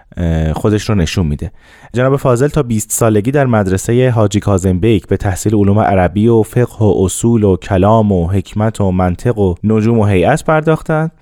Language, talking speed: Persian, 170 wpm